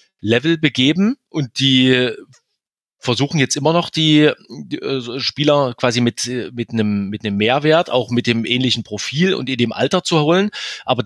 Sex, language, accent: male, German, German